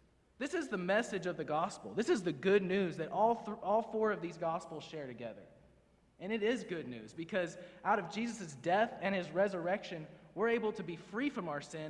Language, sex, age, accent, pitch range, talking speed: English, male, 30-49, American, 160-205 Hz, 215 wpm